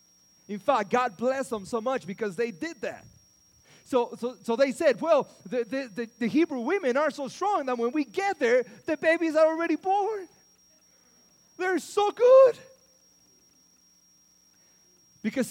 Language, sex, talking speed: English, male, 155 wpm